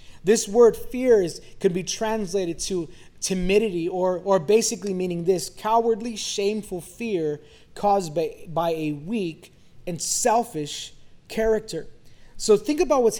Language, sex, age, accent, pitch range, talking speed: English, male, 20-39, American, 185-245 Hz, 125 wpm